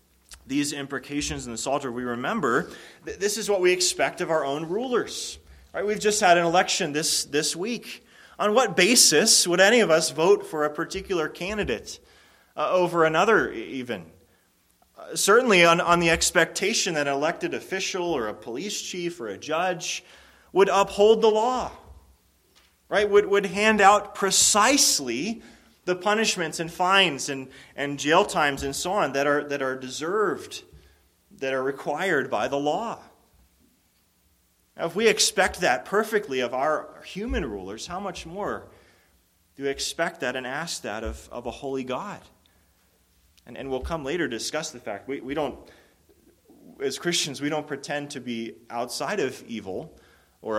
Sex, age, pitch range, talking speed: male, 30-49, 135-200 Hz, 165 wpm